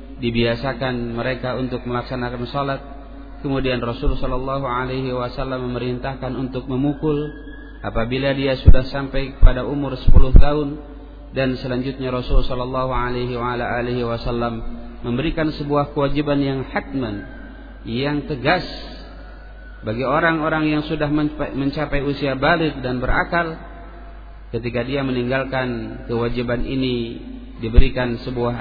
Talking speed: 105 wpm